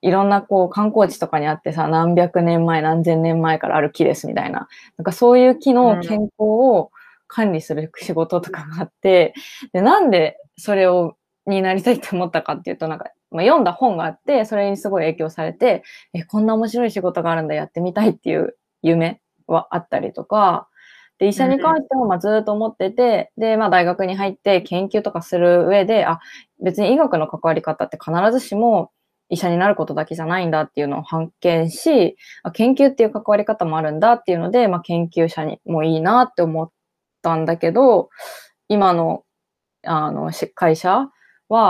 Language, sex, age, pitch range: Japanese, female, 20-39, 165-220 Hz